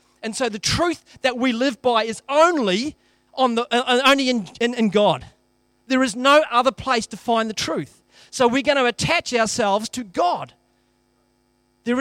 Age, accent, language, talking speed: 40-59, Australian, English, 180 wpm